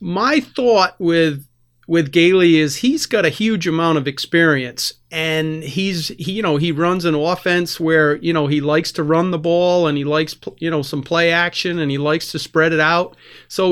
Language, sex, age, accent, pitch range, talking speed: English, male, 40-59, American, 155-195 Hz, 205 wpm